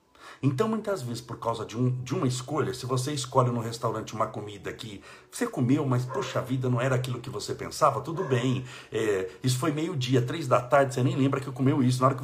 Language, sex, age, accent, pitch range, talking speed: Portuguese, male, 60-79, Brazilian, 130-160 Hz, 230 wpm